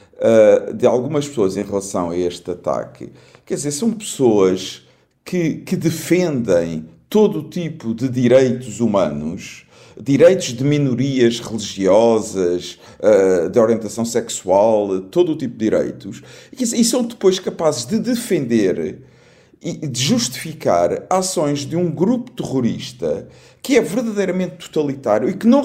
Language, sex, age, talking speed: Portuguese, male, 50-69, 125 wpm